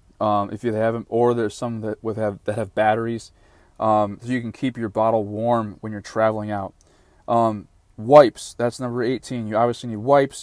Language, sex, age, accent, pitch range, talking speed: English, male, 20-39, American, 110-140 Hz, 195 wpm